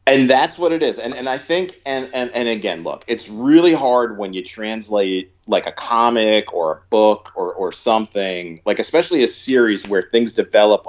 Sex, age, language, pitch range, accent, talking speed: male, 40-59, English, 95-120 Hz, American, 200 wpm